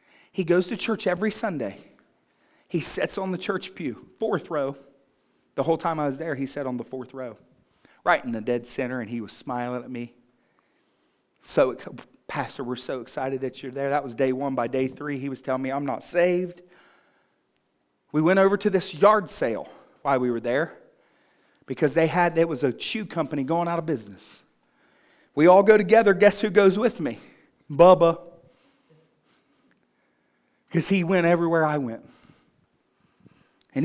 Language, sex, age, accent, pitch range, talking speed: English, male, 40-59, American, 140-220 Hz, 175 wpm